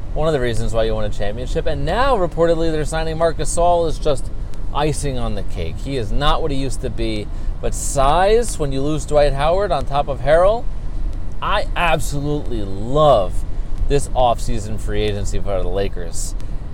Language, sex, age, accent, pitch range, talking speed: English, male, 30-49, American, 105-170 Hz, 185 wpm